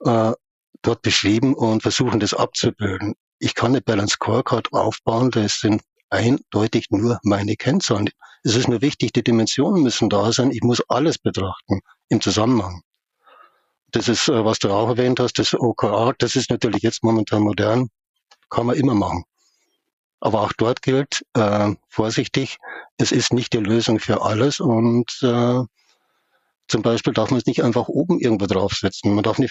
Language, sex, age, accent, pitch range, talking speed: German, male, 60-79, German, 110-130 Hz, 165 wpm